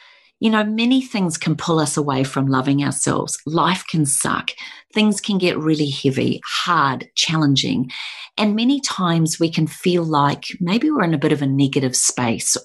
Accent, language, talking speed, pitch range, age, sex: Australian, English, 175 wpm, 140-205 Hz, 40-59, female